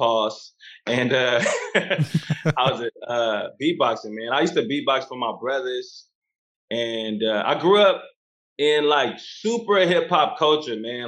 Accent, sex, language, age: American, male, English, 20-39